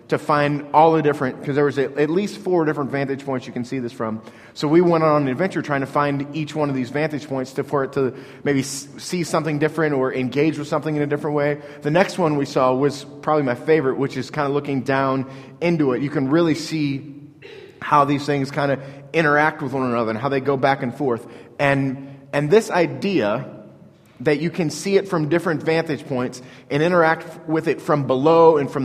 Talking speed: 225 wpm